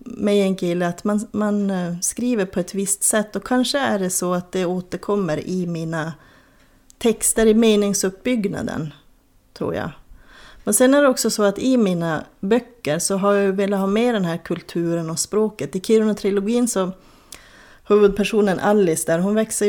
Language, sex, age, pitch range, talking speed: Swedish, female, 30-49, 175-220 Hz, 170 wpm